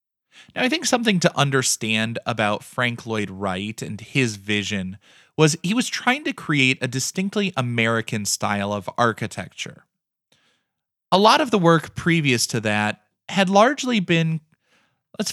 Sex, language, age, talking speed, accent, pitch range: male, English, 20-39, 145 wpm, American, 115-170 Hz